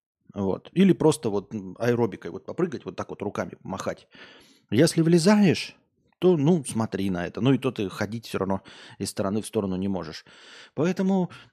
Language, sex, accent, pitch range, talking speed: Russian, male, native, 105-145 Hz, 170 wpm